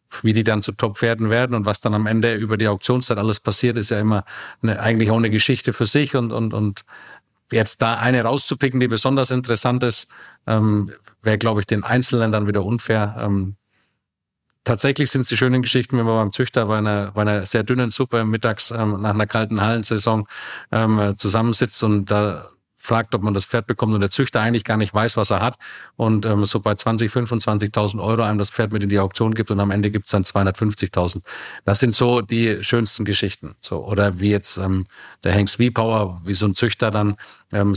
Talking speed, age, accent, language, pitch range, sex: 215 wpm, 40-59, German, German, 100-115 Hz, male